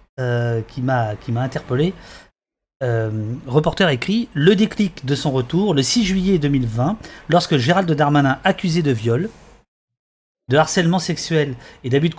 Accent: French